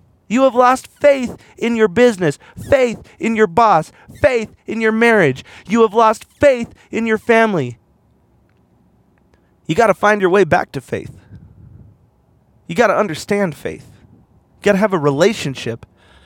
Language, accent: English, American